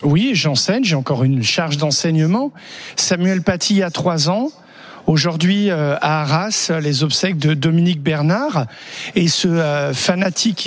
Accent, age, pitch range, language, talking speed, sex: French, 40-59, 160-210 Hz, French, 130 wpm, male